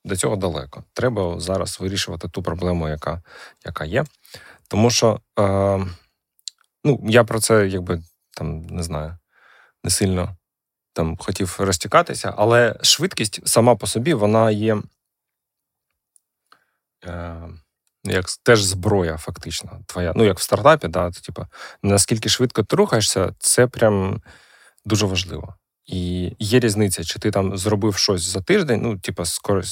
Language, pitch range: Ukrainian, 90-110 Hz